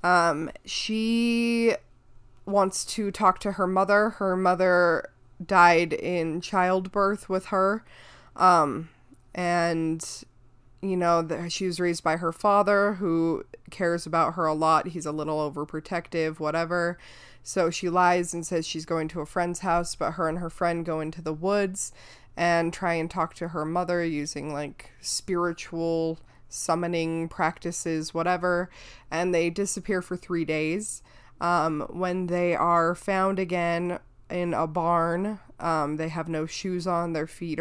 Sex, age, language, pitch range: female, 20-39, English, 155-180 Hz